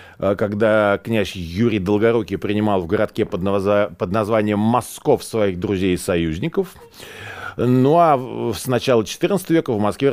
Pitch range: 100-140 Hz